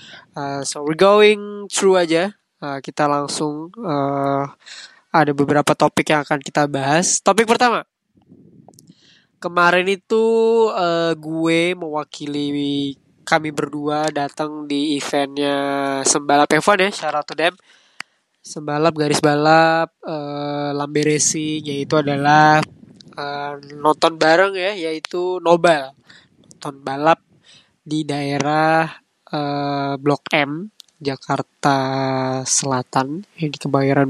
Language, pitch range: Indonesian, 145-165 Hz